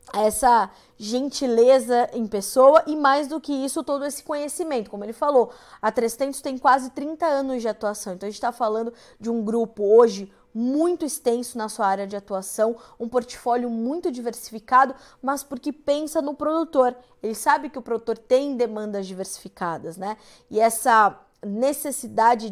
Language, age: Portuguese, 20-39